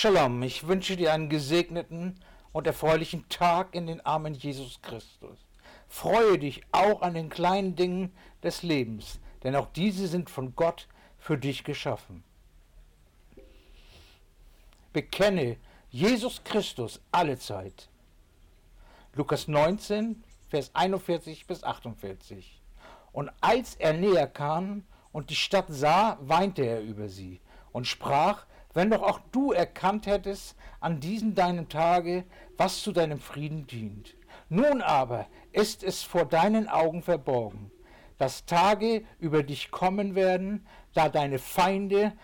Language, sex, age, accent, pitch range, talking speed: German, male, 60-79, German, 135-195 Hz, 125 wpm